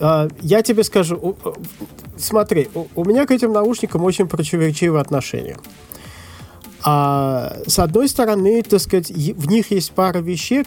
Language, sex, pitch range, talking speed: Russian, male, 145-205 Hz, 130 wpm